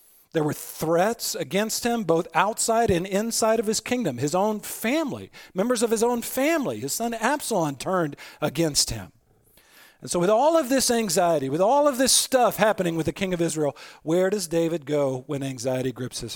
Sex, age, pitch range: male, 40-59, 135-190 Hz